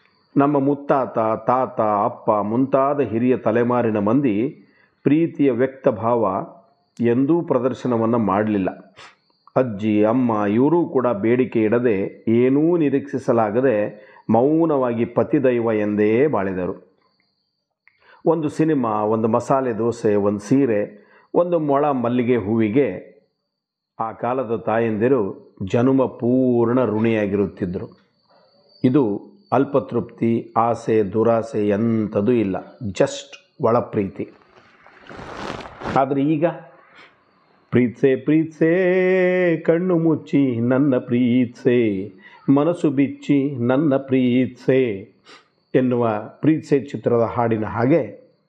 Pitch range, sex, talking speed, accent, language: 115-140 Hz, male, 85 wpm, native, Kannada